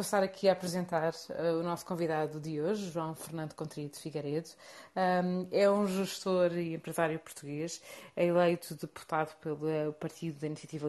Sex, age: female, 30-49